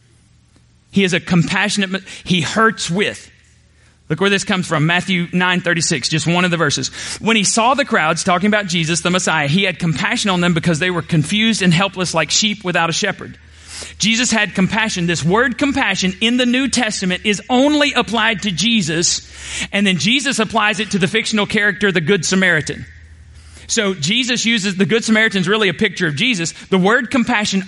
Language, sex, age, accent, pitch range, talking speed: English, male, 30-49, American, 180-220 Hz, 190 wpm